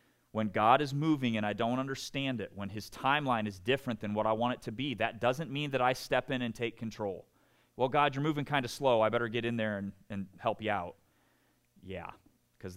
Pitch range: 90-120 Hz